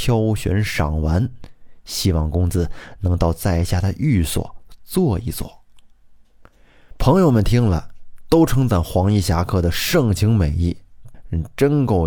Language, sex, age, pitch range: Chinese, male, 20-39, 90-125 Hz